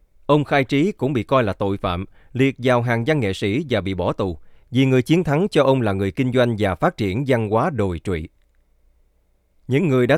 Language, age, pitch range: Vietnamese, 20-39, 95-135 Hz